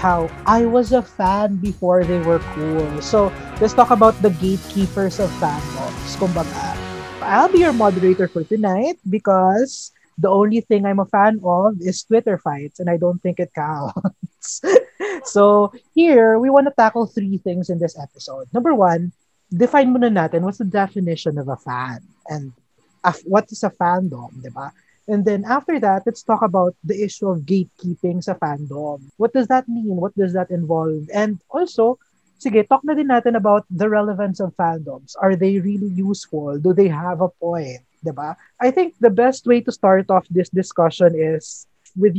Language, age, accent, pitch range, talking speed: Filipino, 20-39, native, 170-215 Hz, 180 wpm